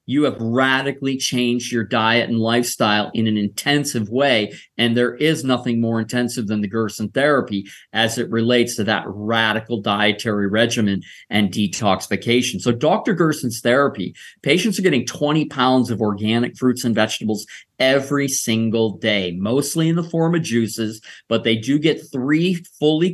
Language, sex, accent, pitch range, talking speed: English, male, American, 115-145 Hz, 160 wpm